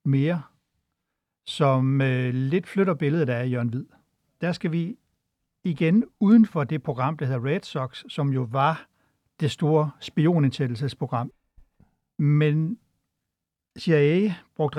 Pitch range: 130-160 Hz